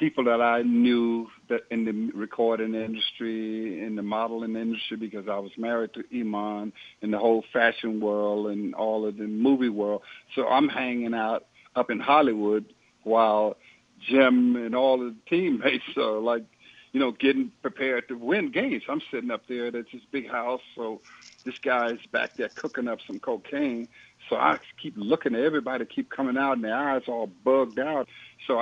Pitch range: 110-135 Hz